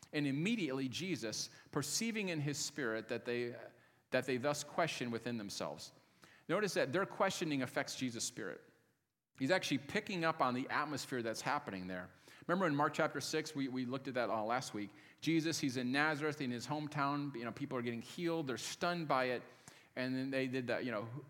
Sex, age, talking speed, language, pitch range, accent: male, 40-59, 195 wpm, English, 125-160 Hz, American